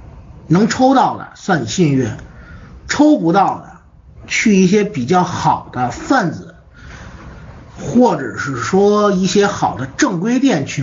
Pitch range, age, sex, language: 145-220 Hz, 50-69, male, Chinese